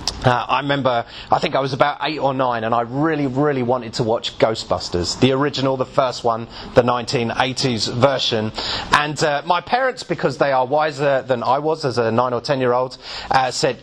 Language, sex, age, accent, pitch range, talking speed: English, male, 30-49, British, 120-155 Hz, 205 wpm